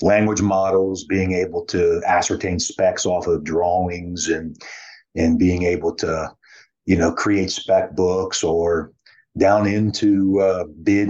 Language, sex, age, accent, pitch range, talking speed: English, male, 30-49, American, 90-105 Hz, 135 wpm